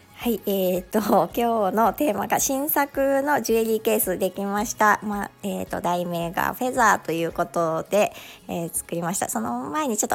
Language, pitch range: Japanese, 190-235 Hz